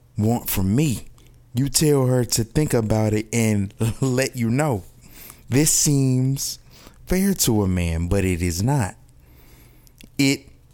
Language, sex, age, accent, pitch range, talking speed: English, male, 20-39, American, 105-130 Hz, 140 wpm